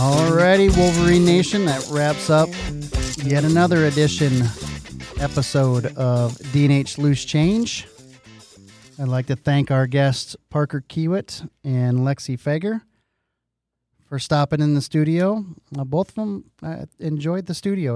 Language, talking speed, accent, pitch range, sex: English, 125 wpm, American, 135-160 Hz, male